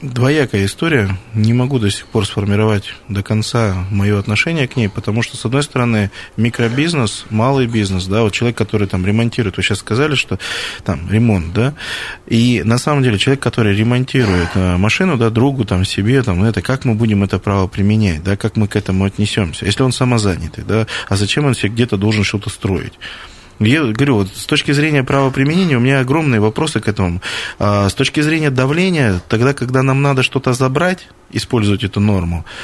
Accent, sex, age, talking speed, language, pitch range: native, male, 20-39, 185 wpm, Russian, 105-135 Hz